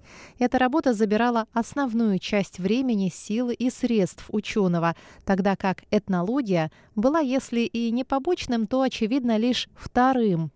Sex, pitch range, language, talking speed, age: female, 185-245 Hz, Russian, 120 wpm, 20-39